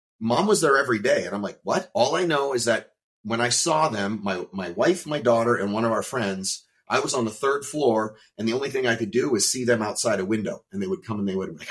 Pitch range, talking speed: 100-120 Hz, 280 wpm